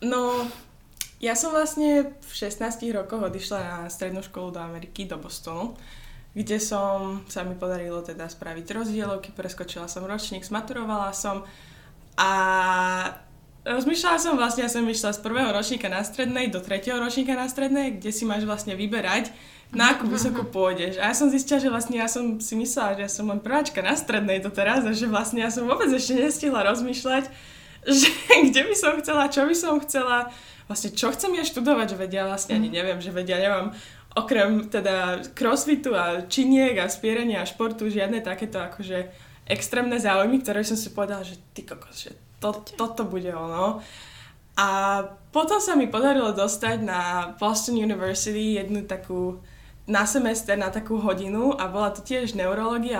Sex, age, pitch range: female, 10-29, 195-250 Hz